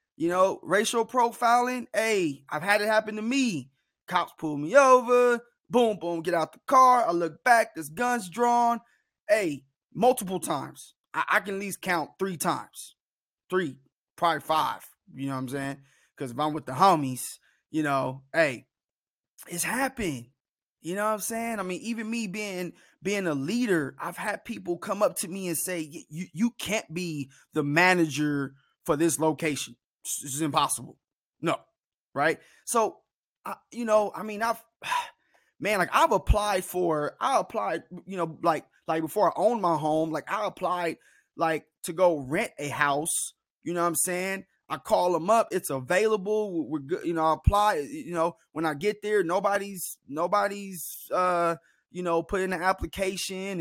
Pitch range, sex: 160-215 Hz, male